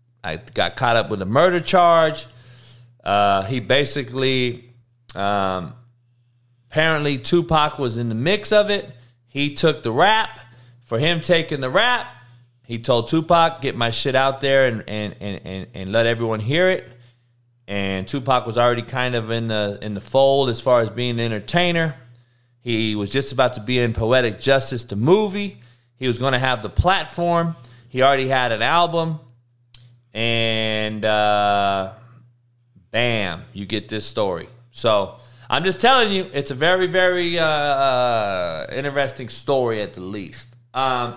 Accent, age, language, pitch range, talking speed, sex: American, 30-49, English, 115-145 Hz, 160 wpm, male